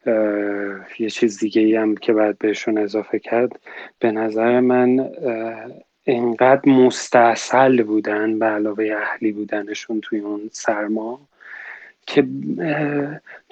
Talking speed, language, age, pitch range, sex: 100 wpm, Persian, 30-49, 115-140 Hz, male